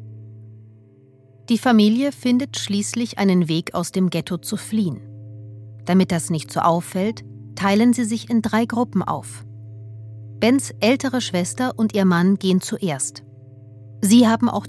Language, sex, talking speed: German, female, 140 wpm